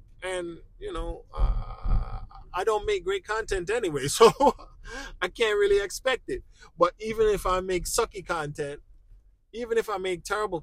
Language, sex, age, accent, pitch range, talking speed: English, male, 20-39, American, 115-180 Hz, 160 wpm